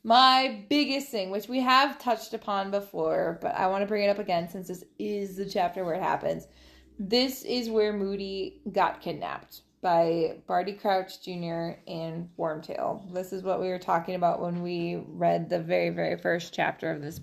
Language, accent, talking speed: English, American, 190 wpm